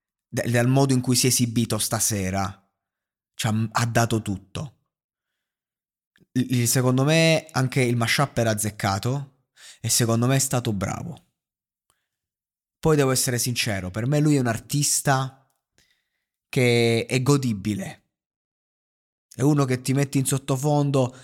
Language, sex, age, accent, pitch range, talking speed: Italian, male, 20-39, native, 110-135 Hz, 130 wpm